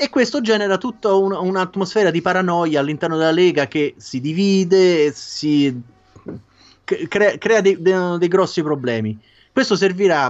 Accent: native